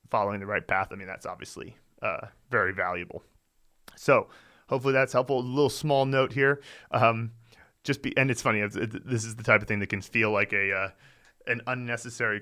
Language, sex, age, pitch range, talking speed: English, male, 30-49, 105-130 Hz, 195 wpm